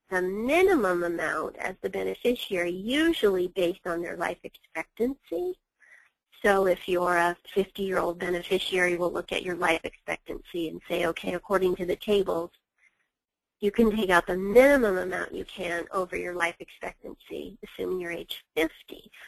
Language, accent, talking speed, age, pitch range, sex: English, American, 150 wpm, 30-49, 180-225 Hz, female